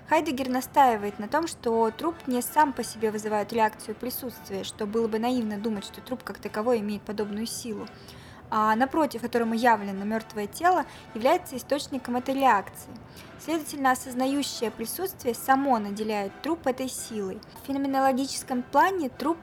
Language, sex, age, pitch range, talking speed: Russian, female, 20-39, 220-270 Hz, 145 wpm